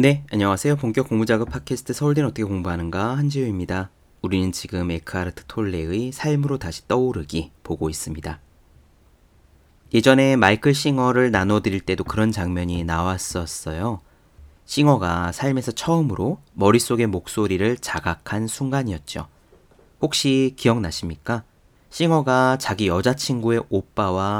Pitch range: 85-130 Hz